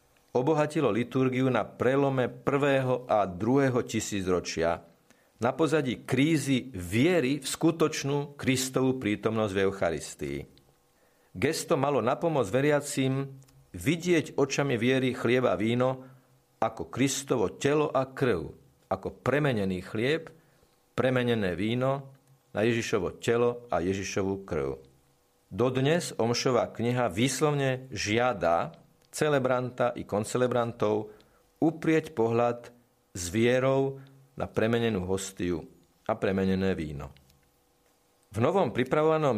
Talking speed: 100 wpm